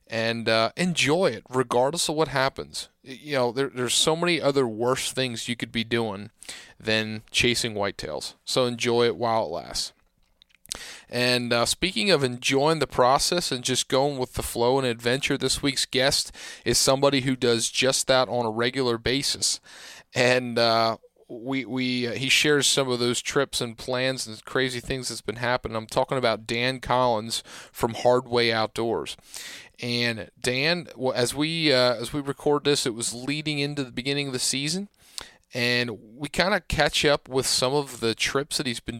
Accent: American